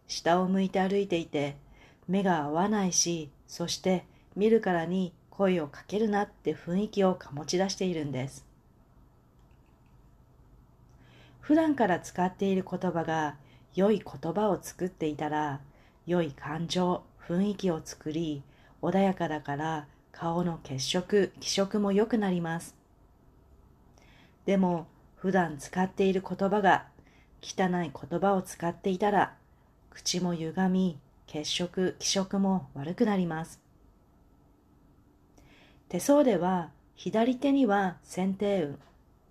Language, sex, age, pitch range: Japanese, female, 40-59, 155-200 Hz